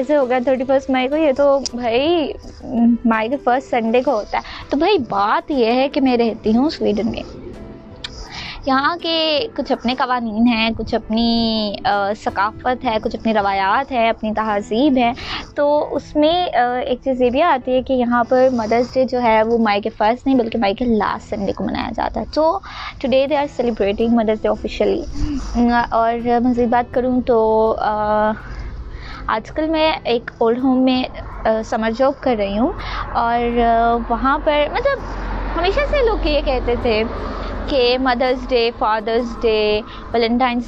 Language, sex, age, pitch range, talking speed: Urdu, female, 20-39, 225-265 Hz, 165 wpm